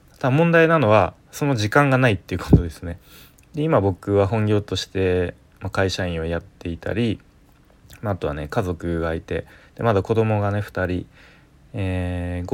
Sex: male